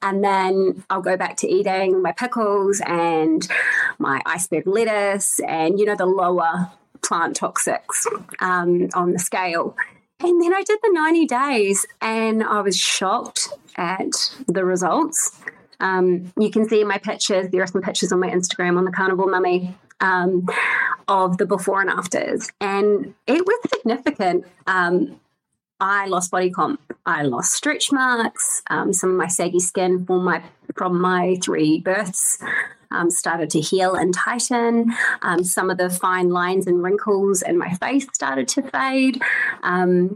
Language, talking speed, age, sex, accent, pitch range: English, 160 wpm, 30-49, female, Australian, 180-220 Hz